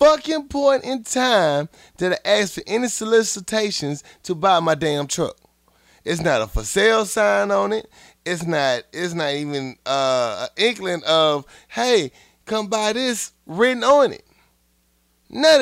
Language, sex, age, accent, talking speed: English, male, 30-49, American, 155 wpm